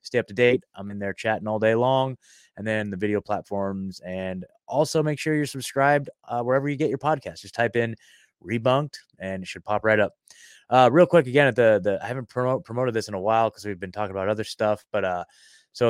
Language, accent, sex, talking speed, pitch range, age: English, American, male, 240 wpm, 95-140 Hz, 20-39